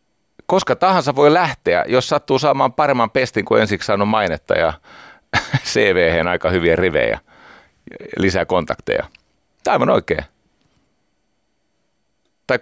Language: Finnish